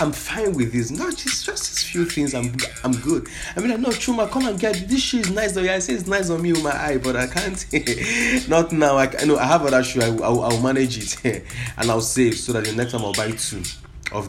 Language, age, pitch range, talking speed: English, 20-39, 110-150 Hz, 270 wpm